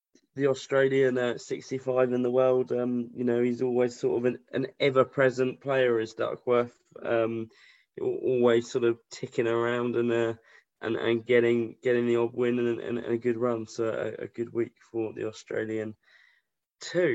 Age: 20-39